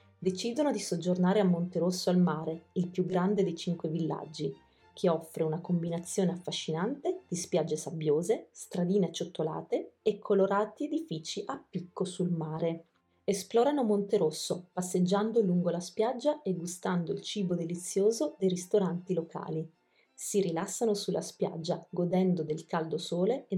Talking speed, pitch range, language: 135 wpm, 170-205 Hz, Italian